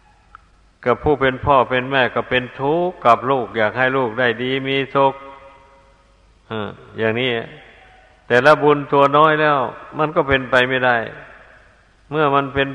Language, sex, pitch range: Thai, male, 115-140 Hz